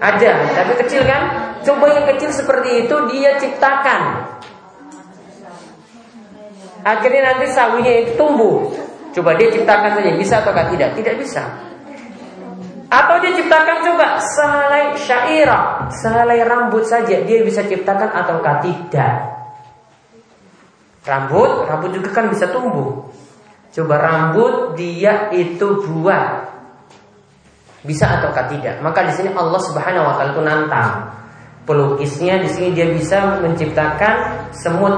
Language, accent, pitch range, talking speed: Indonesian, native, 155-235 Hz, 120 wpm